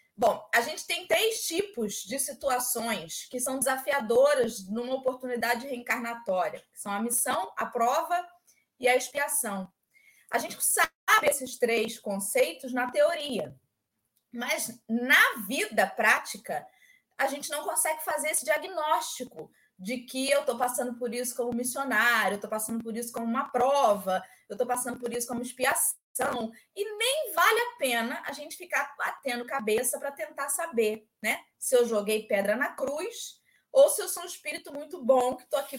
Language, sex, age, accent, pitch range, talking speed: Portuguese, female, 20-39, Brazilian, 230-305 Hz, 165 wpm